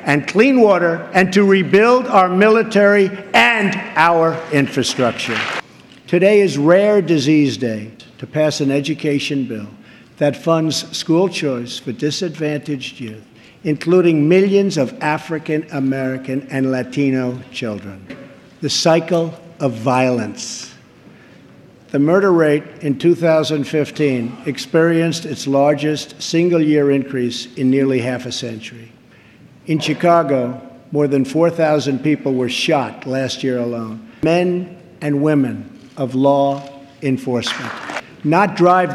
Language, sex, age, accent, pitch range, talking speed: English, male, 60-79, American, 130-165 Hz, 110 wpm